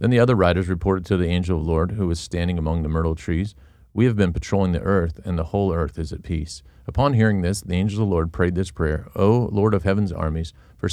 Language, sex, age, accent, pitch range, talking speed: English, male, 40-59, American, 80-105 Hz, 265 wpm